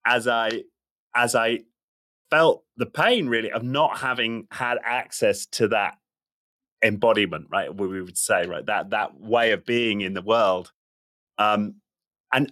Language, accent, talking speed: English, British, 155 wpm